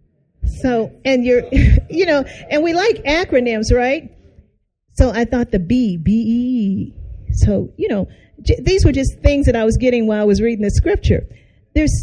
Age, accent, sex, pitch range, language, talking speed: 40-59, American, female, 210-280 Hz, English, 180 wpm